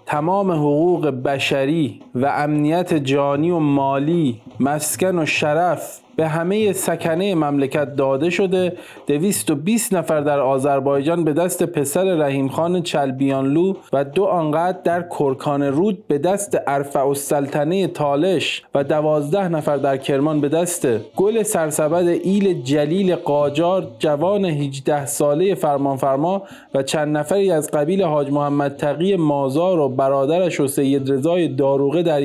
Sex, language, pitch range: male, Persian, 140-175 Hz